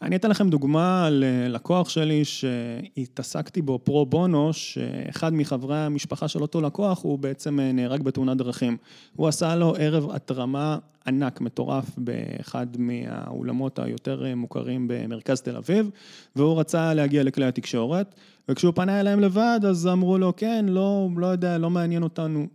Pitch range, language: 130-160 Hz, Hebrew